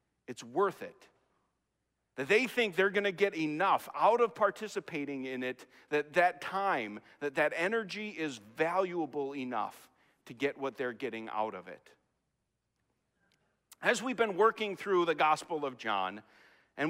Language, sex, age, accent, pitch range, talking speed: English, male, 40-59, American, 155-215 Hz, 150 wpm